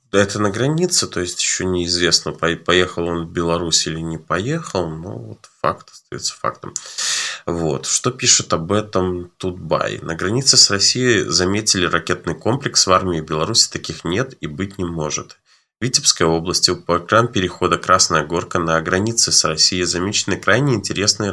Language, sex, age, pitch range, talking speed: Russian, male, 20-39, 85-105 Hz, 165 wpm